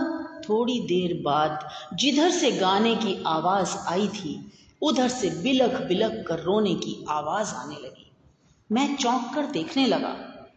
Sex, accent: female, native